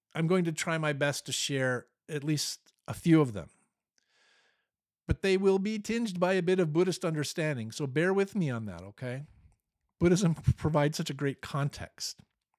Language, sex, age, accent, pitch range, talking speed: English, male, 50-69, American, 115-175 Hz, 180 wpm